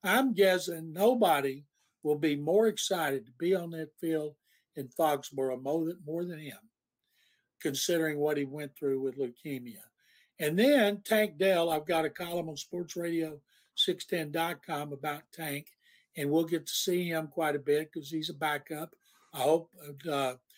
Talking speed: 150 wpm